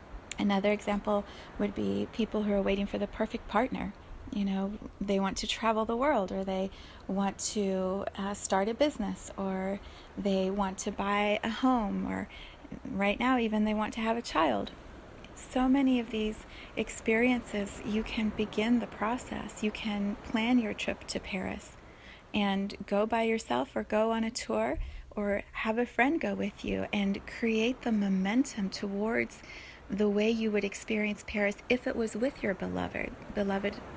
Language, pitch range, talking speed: English, 200-245 Hz, 170 wpm